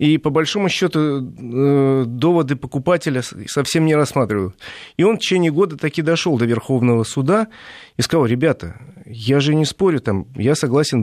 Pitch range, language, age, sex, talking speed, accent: 115-160 Hz, Russian, 40-59, male, 165 wpm, native